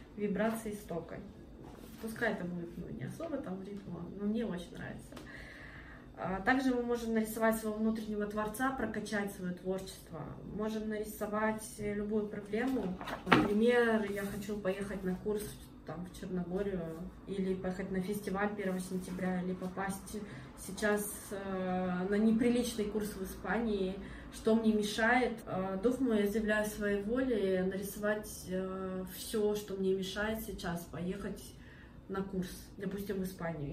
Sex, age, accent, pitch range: female, 20-39, native, 190-220 Hz